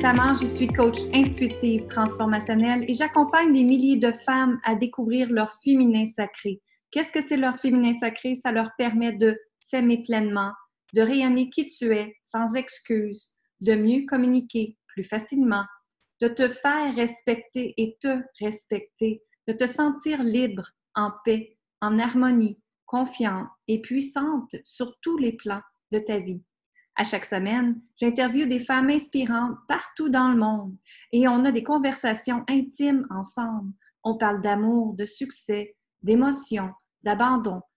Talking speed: 145 wpm